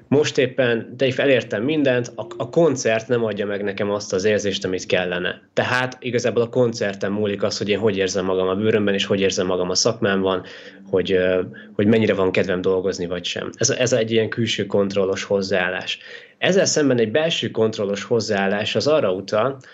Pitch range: 100-120 Hz